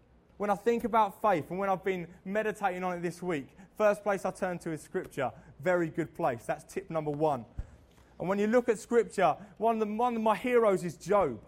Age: 20-39